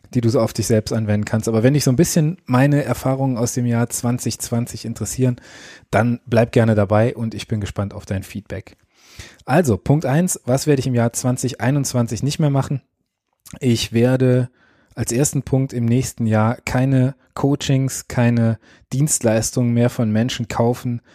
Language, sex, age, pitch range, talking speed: German, male, 20-39, 110-130 Hz, 170 wpm